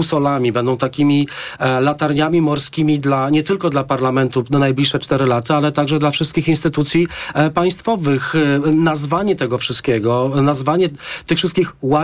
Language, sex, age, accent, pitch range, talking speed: Polish, male, 40-59, native, 145-175 Hz, 130 wpm